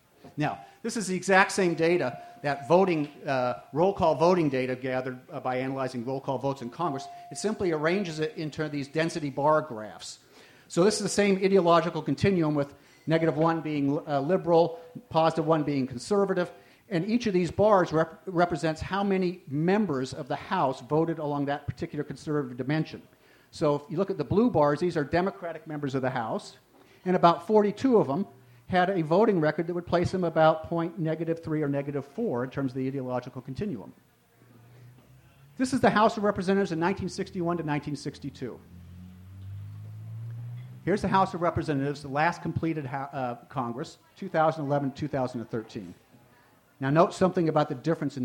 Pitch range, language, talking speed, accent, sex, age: 135-175 Hz, English, 170 wpm, American, male, 50-69